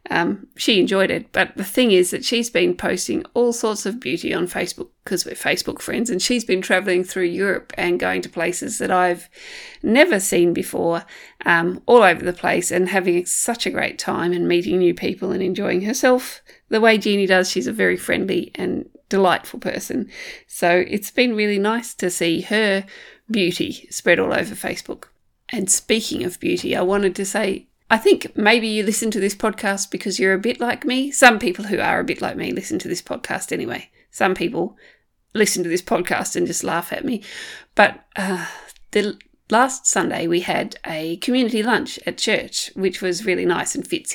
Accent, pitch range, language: Australian, 185-255 Hz, English